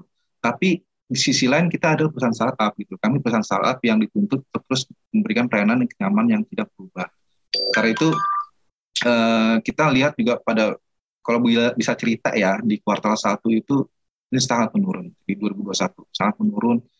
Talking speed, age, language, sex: 155 wpm, 20-39, Indonesian, male